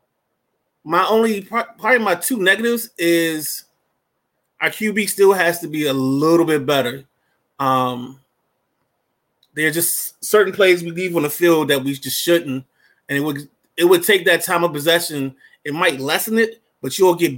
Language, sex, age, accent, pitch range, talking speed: English, male, 30-49, American, 145-190 Hz, 175 wpm